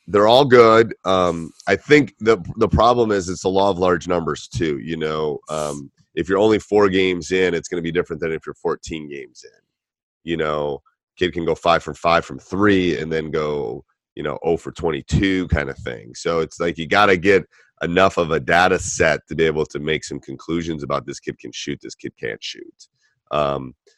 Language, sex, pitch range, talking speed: English, male, 75-95 Hz, 220 wpm